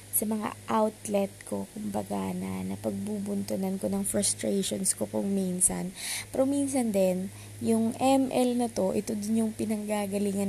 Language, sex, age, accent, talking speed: Filipino, female, 20-39, native, 135 wpm